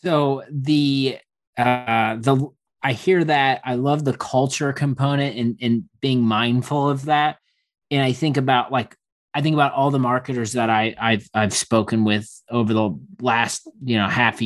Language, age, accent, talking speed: English, 30-49, American, 175 wpm